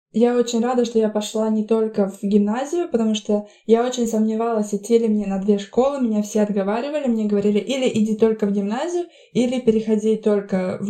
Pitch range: 205-255 Hz